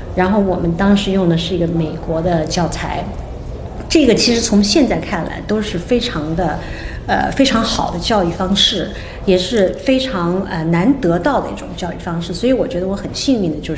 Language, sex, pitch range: Chinese, female, 175-225 Hz